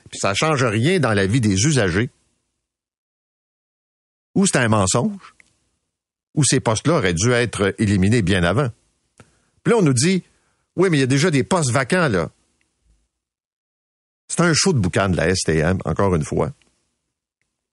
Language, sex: French, male